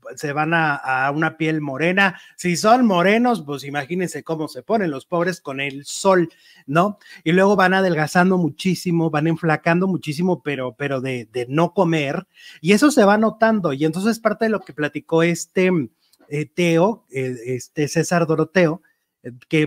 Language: Italian